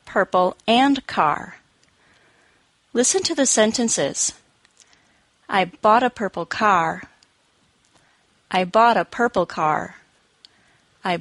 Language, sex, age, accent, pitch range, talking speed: English, female, 30-49, American, 185-245 Hz, 95 wpm